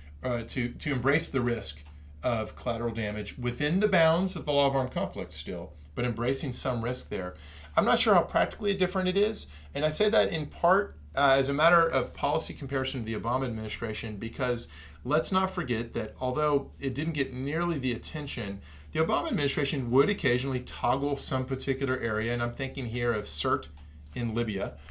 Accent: American